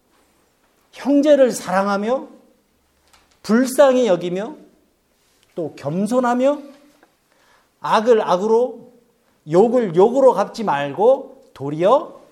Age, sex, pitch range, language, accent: 50-69, male, 200-260 Hz, Korean, native